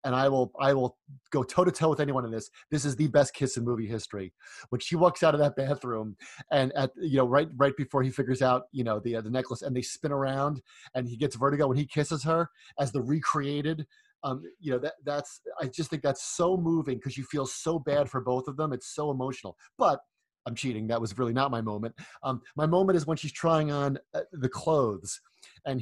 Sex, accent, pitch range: male, American, 125-150 Hz